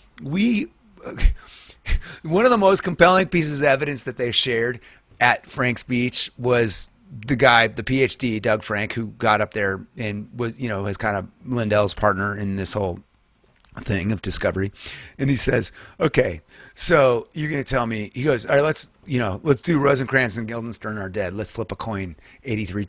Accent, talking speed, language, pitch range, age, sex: American, 185 wpm, English, 100-130 Hz, 30-49, male